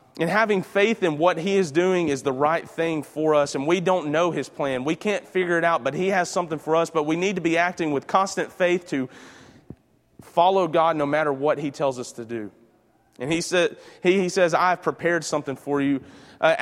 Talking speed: 230 wpm